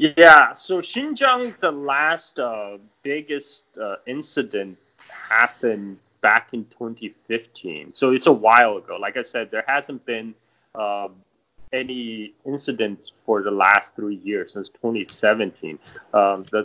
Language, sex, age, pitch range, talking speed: English, male, 30-49, 100-125 Hz, 125 wpm